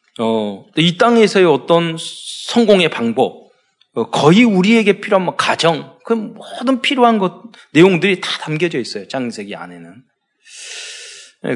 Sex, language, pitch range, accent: male, Korean, 150-220 Hz, native